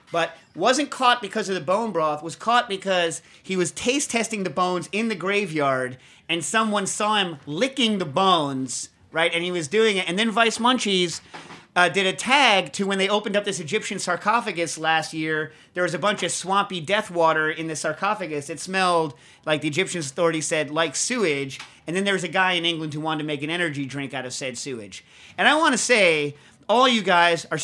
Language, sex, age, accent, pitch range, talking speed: English, male, 30-49, American, 150-195 Hz, 215 wpm